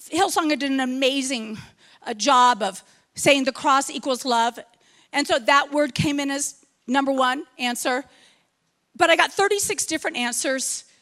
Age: 40-59